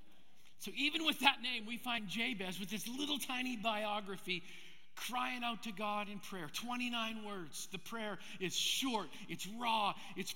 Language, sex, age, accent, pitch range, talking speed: English, male, 50-69, American, 165-215 Hz, 160 wpm